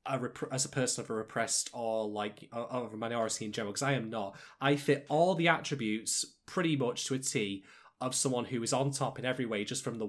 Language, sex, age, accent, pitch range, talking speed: English, male, 20-39, British, 115-150 Hz, 245 wpm